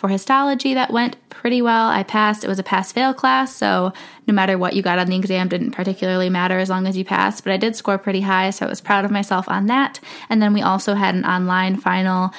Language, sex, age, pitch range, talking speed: English, female, 10-29, 185-225 Hz, 250 wpm